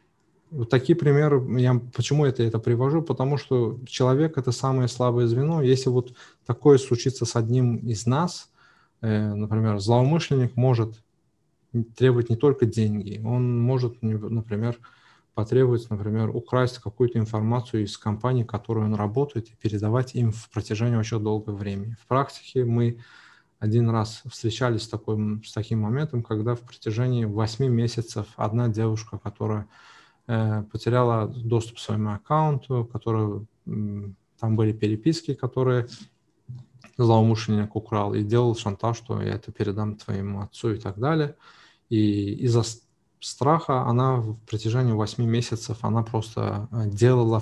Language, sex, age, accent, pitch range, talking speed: Russian, male, 20-39, native, 110-125 Hz, 140 wpm